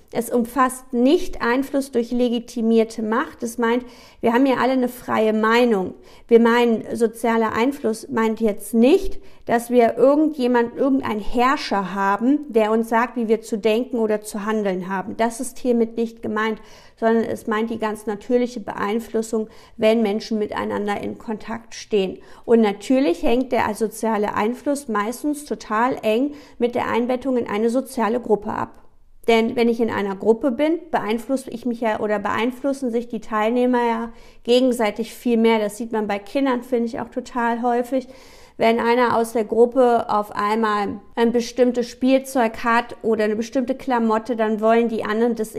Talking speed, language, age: 165 wpm, German, 50-69